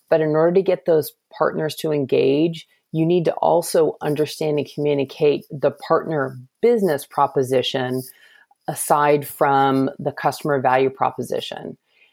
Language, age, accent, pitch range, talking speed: English, 40-59, American, 140-170 Hz, 130 wpm